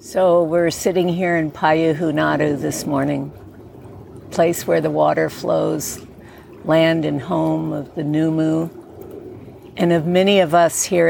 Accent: American